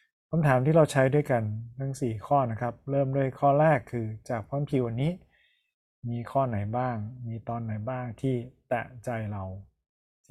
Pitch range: 115-135 Hz